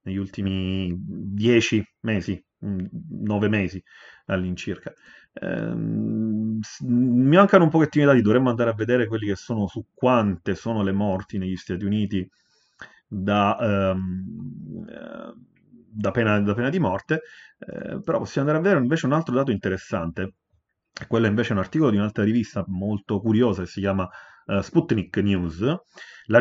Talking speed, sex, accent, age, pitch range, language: 150 wpm, male, native, 30-49, 95-120 Hz, Italian